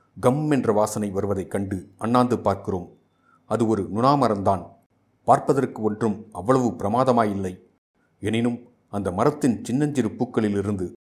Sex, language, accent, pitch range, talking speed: male, Tamil, native, 100-125 Hz, 105 wpm